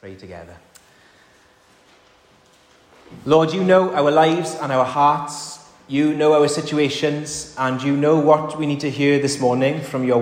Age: 30-49